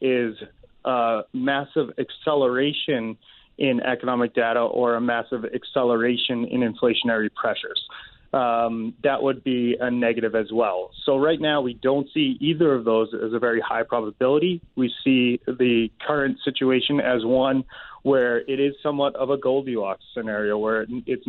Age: 30-49